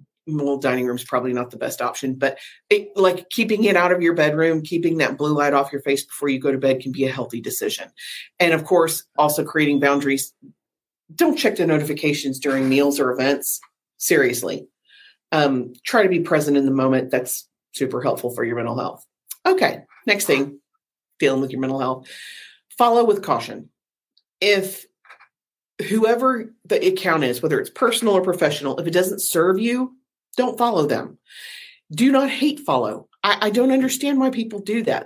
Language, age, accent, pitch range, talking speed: English, 40-59, American, 145-220 Hz, 180 wpm